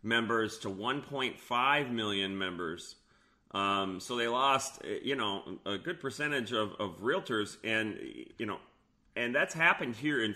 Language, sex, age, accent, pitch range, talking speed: English, male, 30-49, American, 105-125 Hz, 145 wpm